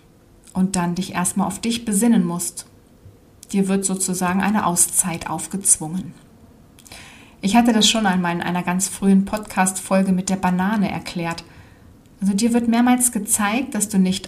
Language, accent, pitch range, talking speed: German, German, 175-220 Hz, 150 wpm